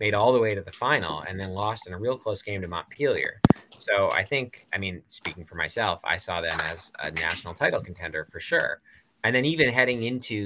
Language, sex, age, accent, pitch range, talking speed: English, male, 20-39, American, 85-105 Hz, 230 wpm